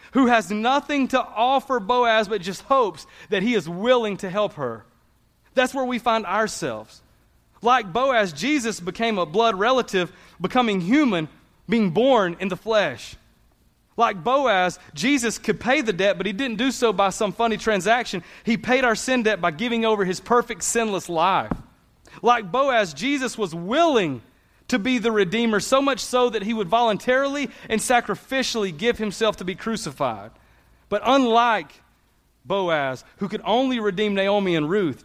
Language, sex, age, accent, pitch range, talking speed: English, male, 30-49, American, 190-245 Hz, 165 wpm